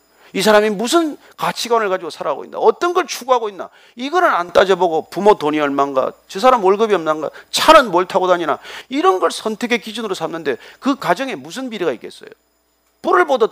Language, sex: Korean, male